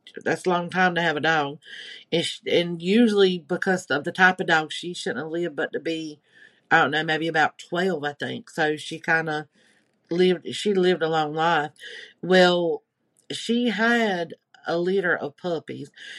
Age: 50-69